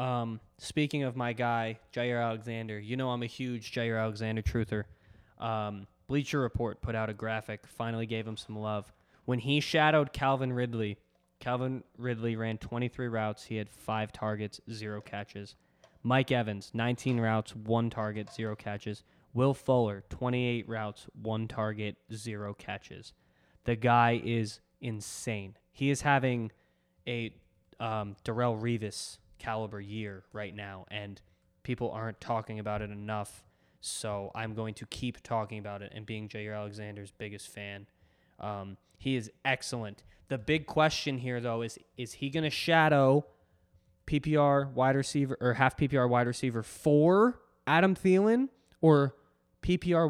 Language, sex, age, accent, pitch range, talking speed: English, male, 20-39, American, 105-130 Hz, 145 wpm